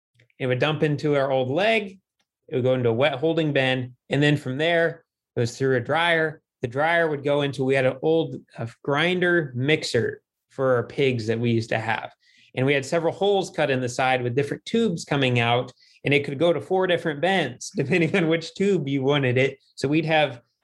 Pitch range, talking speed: 125-155 Hz, 220 wpm